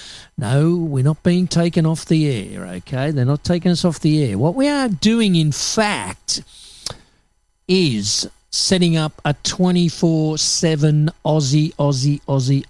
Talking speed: 140 wpm